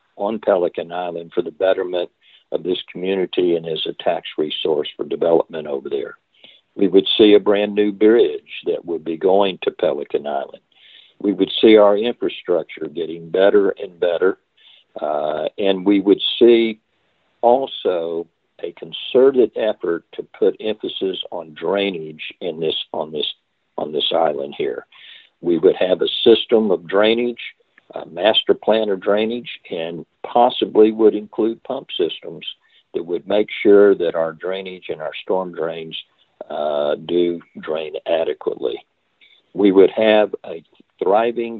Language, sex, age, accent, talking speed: English, male, 50-69, American, 145 wpm